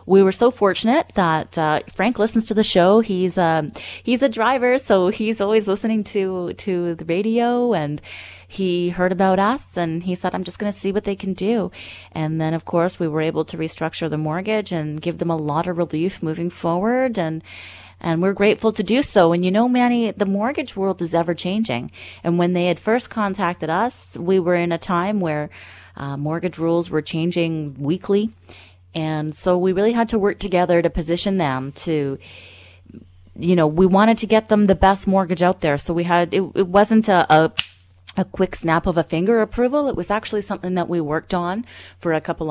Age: 30-49